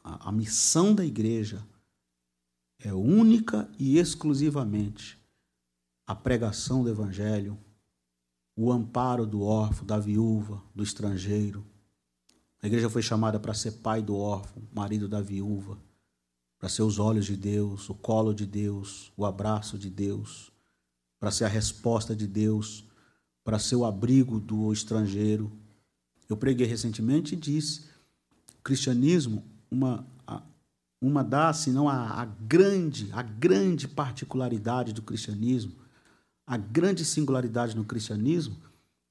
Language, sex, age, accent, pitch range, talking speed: Portuguese, male, 50-69, Brazilian, 105-135 Hz, 125 wpm